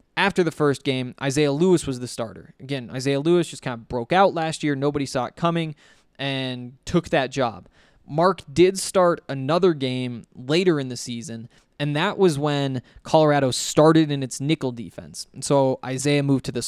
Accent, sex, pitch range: American, male, 125-160 Hz